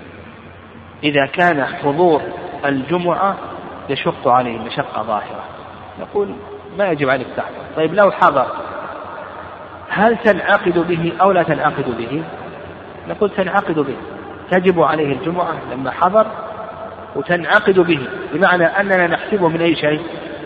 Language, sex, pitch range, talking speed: Arabic, male, 140-185 Hz, 115 wpm